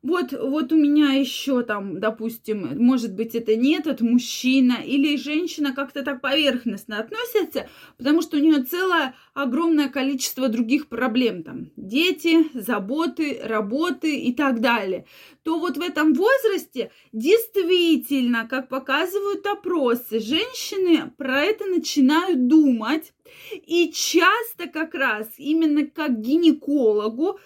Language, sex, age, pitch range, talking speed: Russian, female, 20-39, 250-340 Hz, 120 wpm